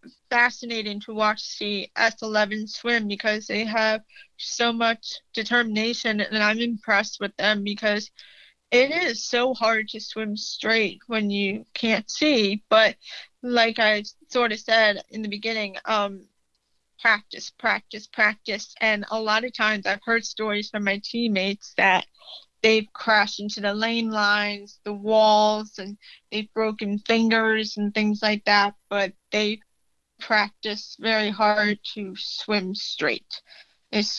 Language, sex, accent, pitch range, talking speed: English, female, American, 205-225 Hz, 140 wpm